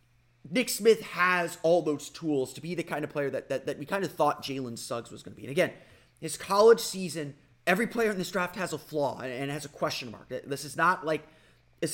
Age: 30-49